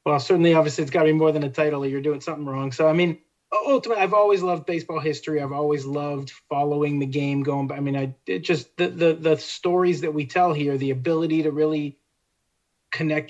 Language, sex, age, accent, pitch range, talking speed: English, male, 30-49, American, 145-170 Hz, 230 wpm